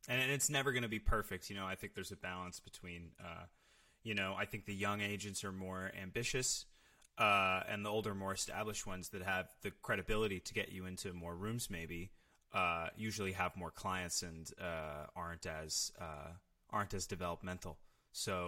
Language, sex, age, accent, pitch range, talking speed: English, male, 20-39, American, 90-105 Hz, 190 wpm